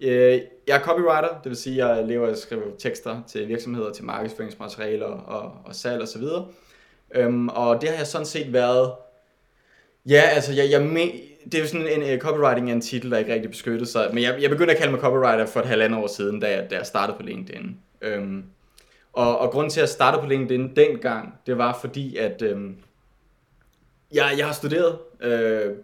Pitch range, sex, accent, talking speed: 115-150 Hz, male, native, 205 wpm